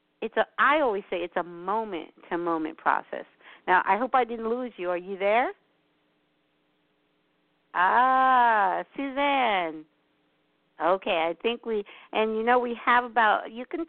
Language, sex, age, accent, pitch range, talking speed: English, female, 50-69, American, 175-225 Hz, 145 wpm